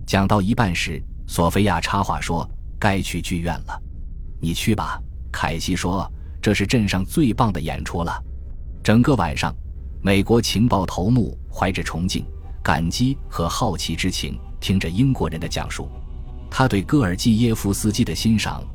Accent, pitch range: native, 80-105 Hz